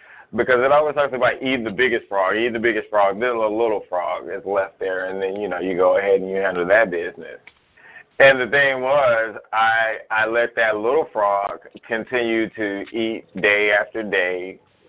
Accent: American